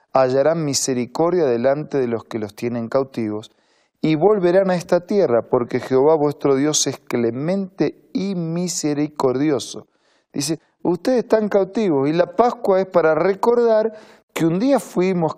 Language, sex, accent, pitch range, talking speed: Spanish, male, Argentinian, 130-170 Hz, 140 wpm